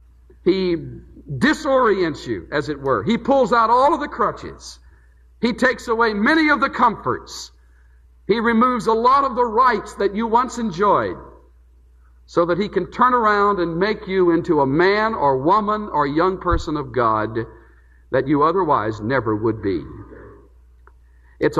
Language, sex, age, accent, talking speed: English, male, 50-69, American, 160 wpm